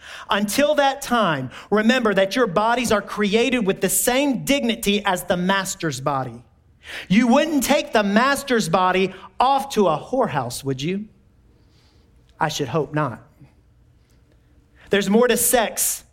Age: 40-59